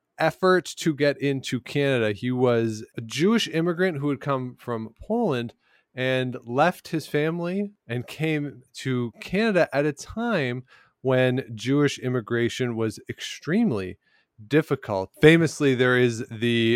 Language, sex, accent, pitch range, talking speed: English, male, American, 110-140 Hz, 130 wpm